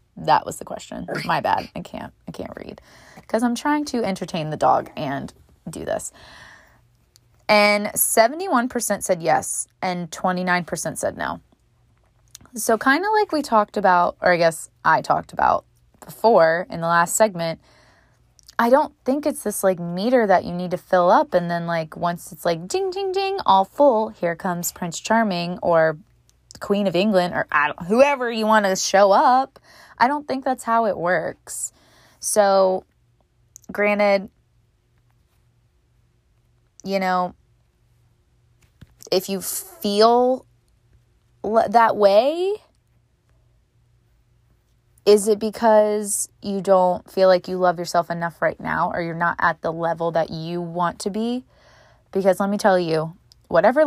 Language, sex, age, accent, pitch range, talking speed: English, female, 20-39, American, 160-220 Hz, 145 wpm